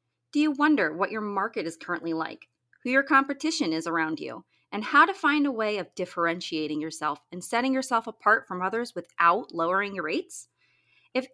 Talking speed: 185 wpm